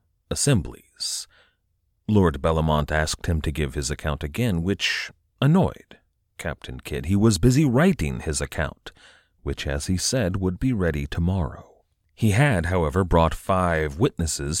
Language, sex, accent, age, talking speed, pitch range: English, male, American, 40-59, 140 wpm, 75-100 Hz